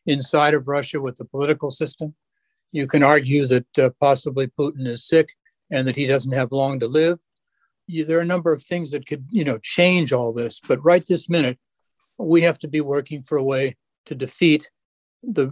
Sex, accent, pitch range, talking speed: male, American, 135-160 Hz, 205 wpm